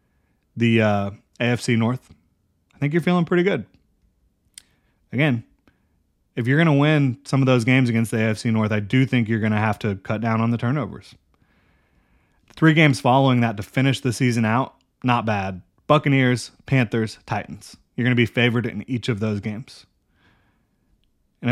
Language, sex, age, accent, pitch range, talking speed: English, male, 30-49, American, 110-135 Hz, 175 wpm